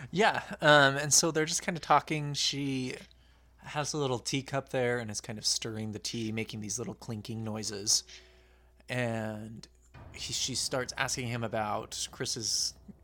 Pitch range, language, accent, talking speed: 105-130 Hz, English, American, 155 wpm